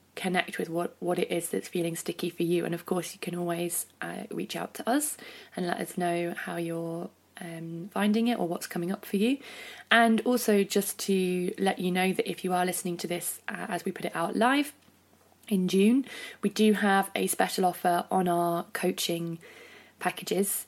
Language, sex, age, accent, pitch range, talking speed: English, female, 20-39, British, 175-210 Hz, 205 wpm